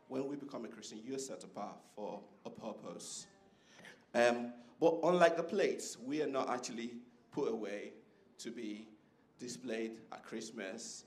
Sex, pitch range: male, 110-130 Hz